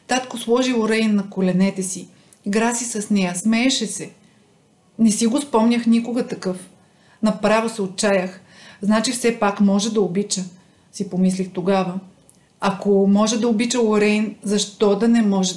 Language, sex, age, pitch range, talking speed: Bulgarian, female, 40-59, 185-215 Hz, 150 wpm